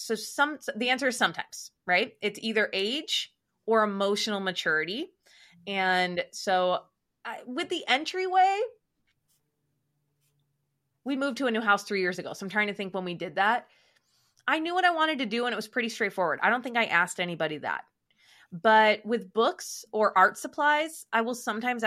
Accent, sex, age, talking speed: American, female, 20-39, 180 wpm